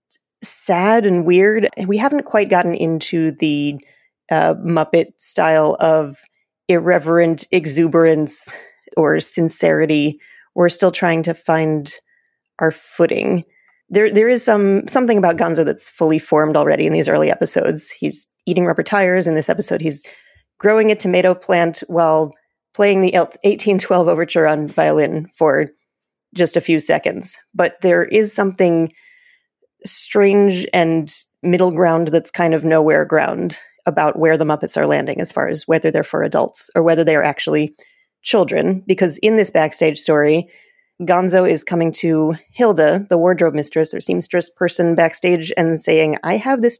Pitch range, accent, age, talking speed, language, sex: 160-205 Hz, American, 30-49, 150 wpm, English, female